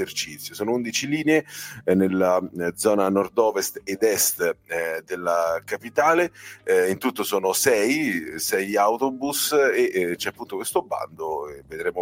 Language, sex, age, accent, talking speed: Italian, male, 30-49, native, 110 wpm